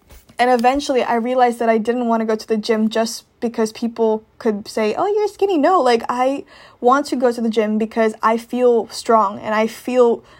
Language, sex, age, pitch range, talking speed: English, female, 20-39, 220-245 Hz, 215 wpm